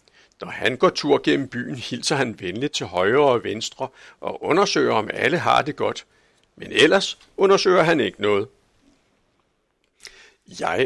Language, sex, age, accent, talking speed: Danish, male, 60-79, native, 150 wpm